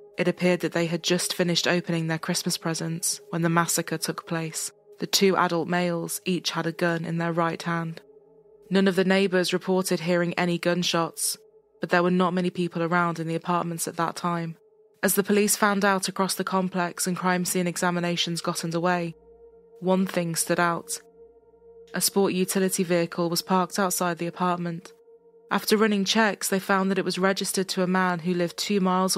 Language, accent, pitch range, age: English, British, 170-190 Hz, 20-39